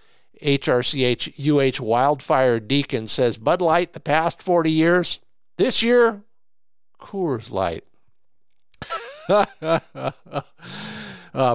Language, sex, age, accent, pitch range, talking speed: English, male, 50-69, American, 130-175 Hz, 85 wpm